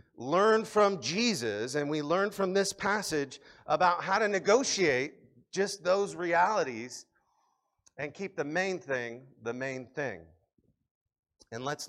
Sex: male